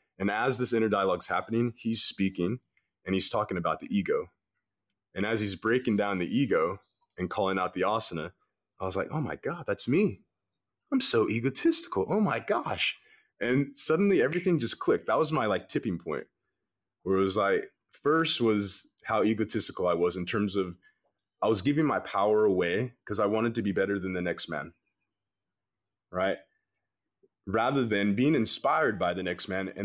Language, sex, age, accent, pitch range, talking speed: English, male, 20-39, American, 95-125 Hz, 180 wpm